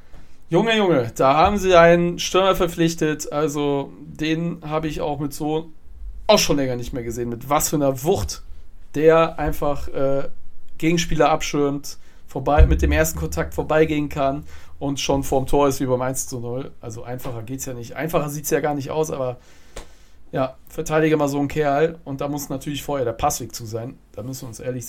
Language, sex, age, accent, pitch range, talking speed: German, male, 40-59, German, 130-155 Hz, 200 wpm